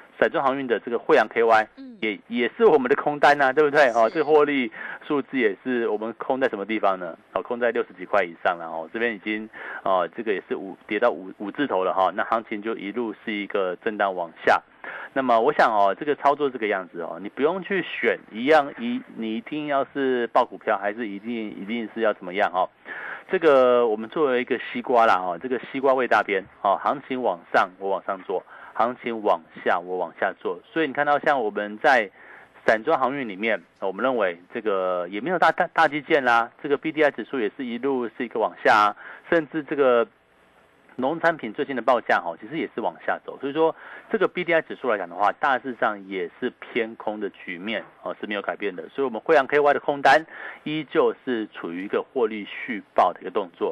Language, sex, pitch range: Chinese, male, 110-155 Hz